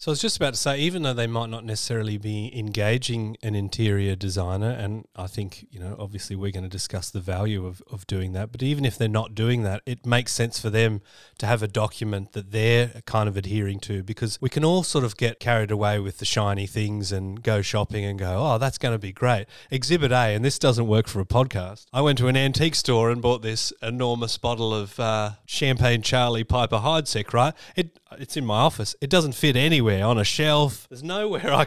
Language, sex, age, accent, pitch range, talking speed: English, male, 30-49, Australian, 105-130 Hz, 230 wpm